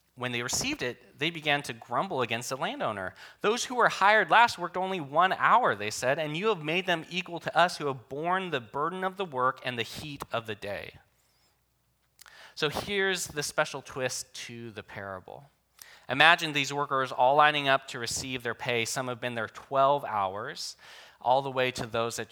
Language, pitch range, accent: English, 125-160 Hz, American